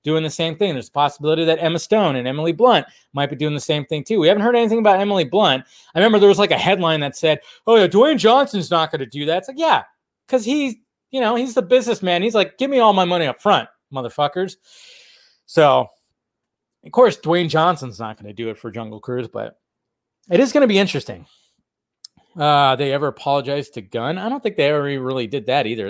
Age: 20-39